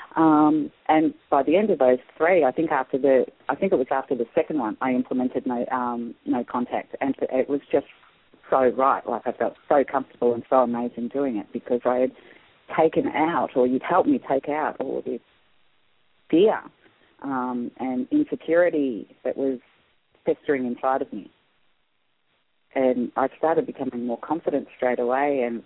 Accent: Australian